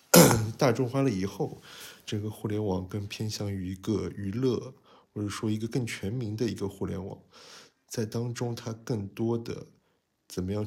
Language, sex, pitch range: Chinese, male, 95-115 Hz